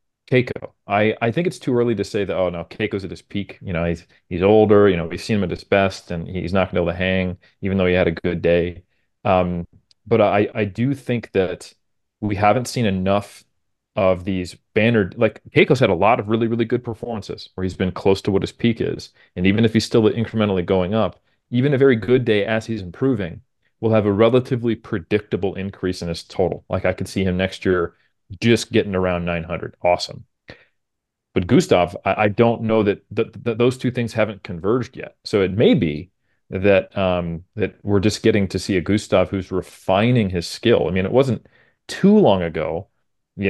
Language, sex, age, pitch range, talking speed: English, male, 30-49, 90-110 Hz, 215 wpm